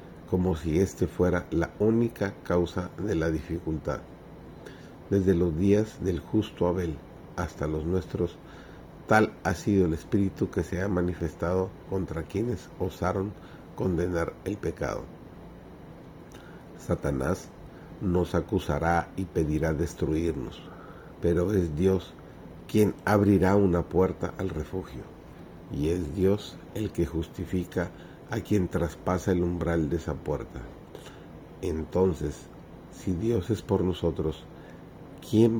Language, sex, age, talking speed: Spanish, male, 50-69, 120 wpm